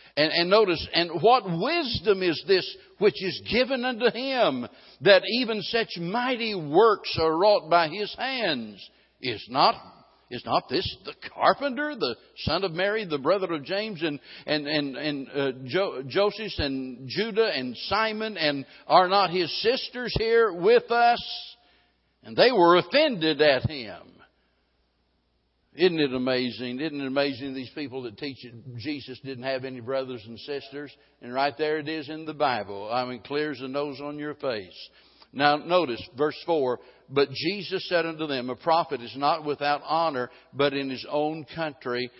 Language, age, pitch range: English, 60-79, 135-195 Hz